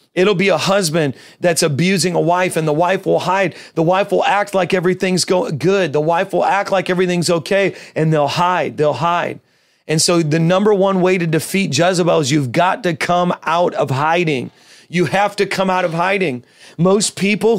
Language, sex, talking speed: English, male, 200 wpm